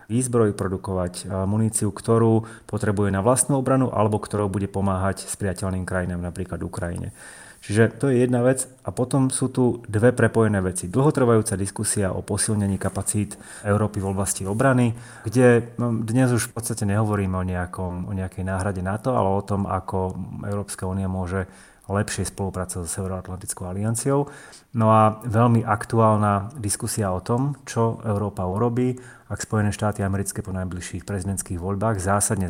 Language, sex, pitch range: Slovak, male, 95-115 Hz